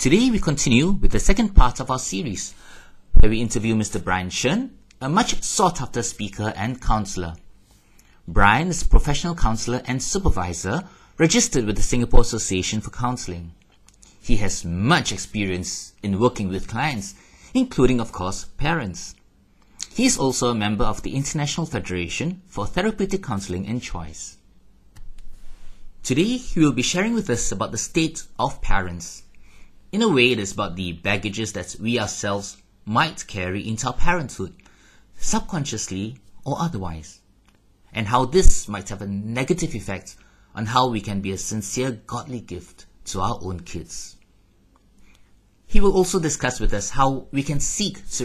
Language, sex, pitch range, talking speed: English, male, 95-135 Hz, 155 wpm